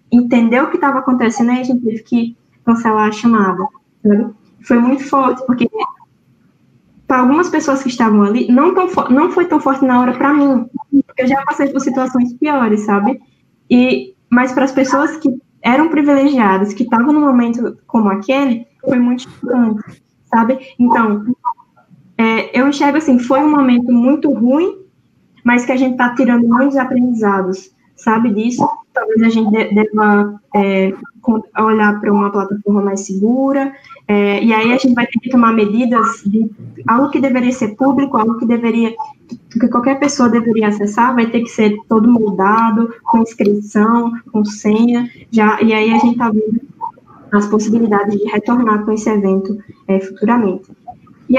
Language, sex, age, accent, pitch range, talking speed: Portuguese, female, 10-29, Brazilian, 215-265 Hz, 165 wpm